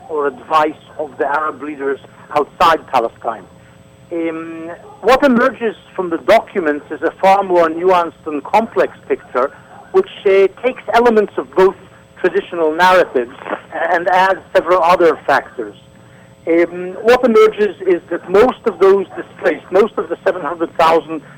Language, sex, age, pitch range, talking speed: English, male, 60-79, 165-210 Hz, 135 wpm